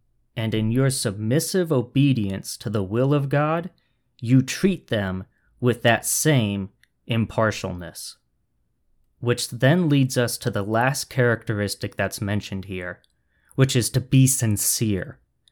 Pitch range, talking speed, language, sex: 105-140 Hz, 130 wpm, English, male